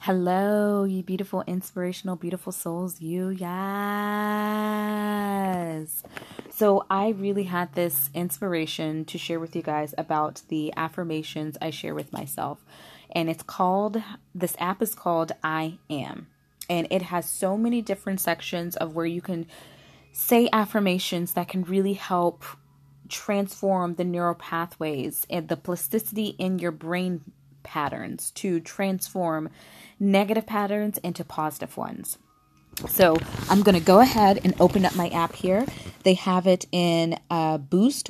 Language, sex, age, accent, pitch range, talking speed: English, female, 20-39, American, 160-195 Hz, 140 wpm